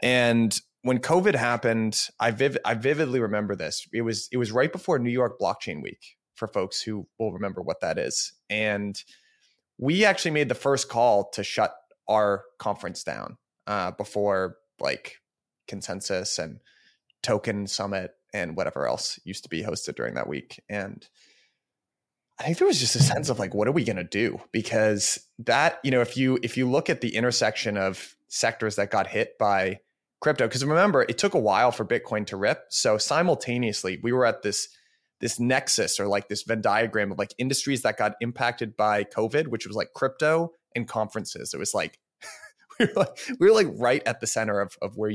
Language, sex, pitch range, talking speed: English, male, 105-135 Hz, 190 wpm